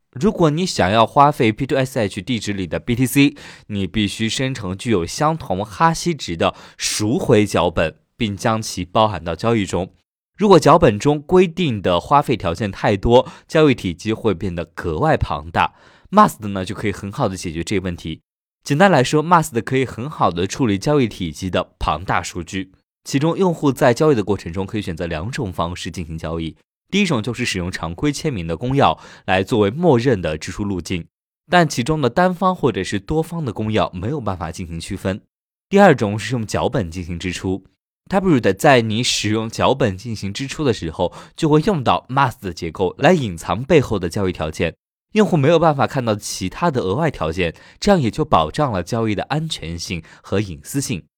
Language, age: Chinese, 20-39